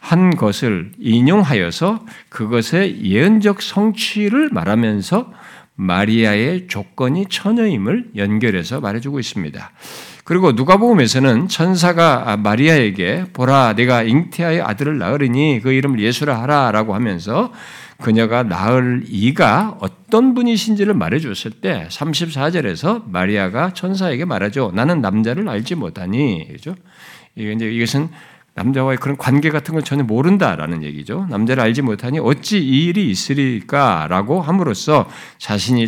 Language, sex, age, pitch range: Korean, male, 50-69, 105-170 Hz